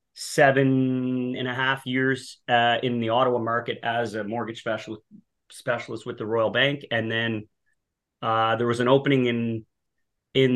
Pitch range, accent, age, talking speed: 110-130 Hz, American, 30-49, 160 wpm